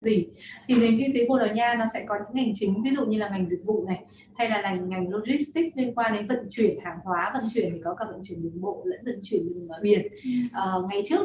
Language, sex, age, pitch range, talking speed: Vietnamese, female, 20-39, 200-255 Hz, 270 wpm